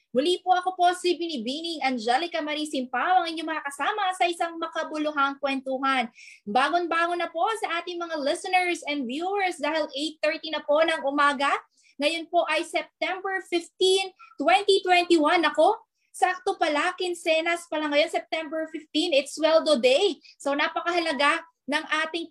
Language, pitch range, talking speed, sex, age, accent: Filipino, 280-355 Hz, 140 wpm, female, 20-39, native